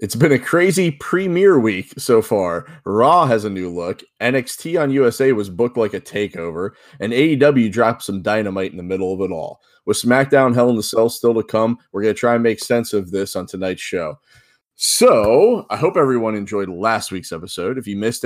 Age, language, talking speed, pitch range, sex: 20-39, English, 210 wpm, 90-115 Hz, male